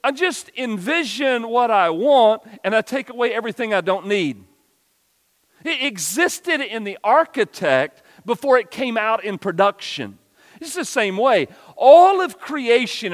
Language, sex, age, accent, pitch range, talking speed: English, male, 40-59, American, 150-250 Hz, 145 wpm